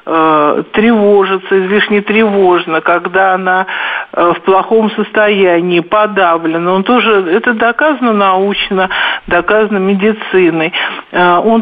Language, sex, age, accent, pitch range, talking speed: Russian, male, 50-69, native, 180-215 Hz, 90 wpm